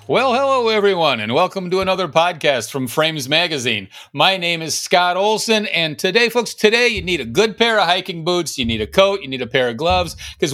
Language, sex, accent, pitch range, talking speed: English, male, American, 155-220 Hz, 220 wpm